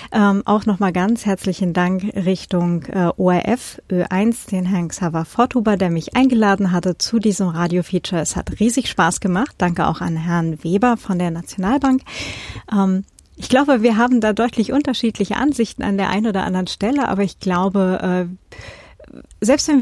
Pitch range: 180-240 Hz